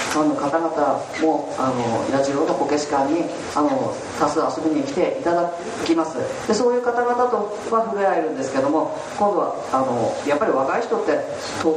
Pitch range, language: 155-210 Hz, Japanese